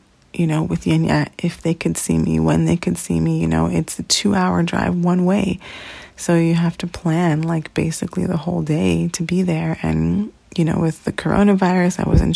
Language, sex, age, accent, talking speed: English, female, 30-49, American, 210 wpm